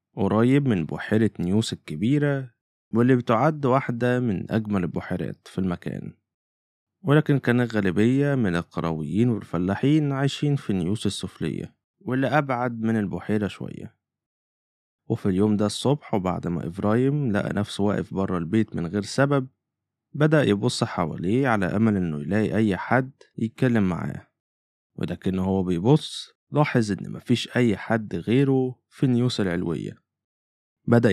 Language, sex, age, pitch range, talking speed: Arabic, male, 20-39, 95-125 Hz, 130 wpm